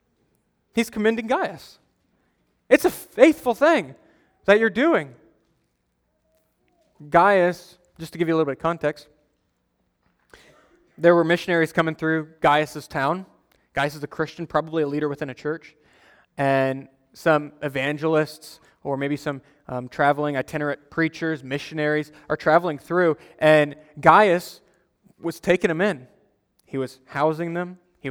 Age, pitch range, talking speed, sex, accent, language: 20-39, 145-190 Hz, 130 wpm, male, American, English